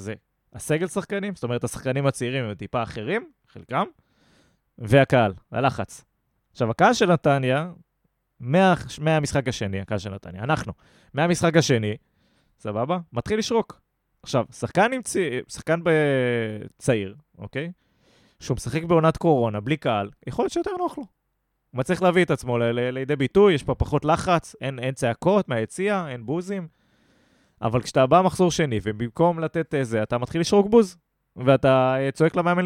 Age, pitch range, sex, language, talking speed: 20-39, 120-175 Hz, male, Hebrew, 145 wpm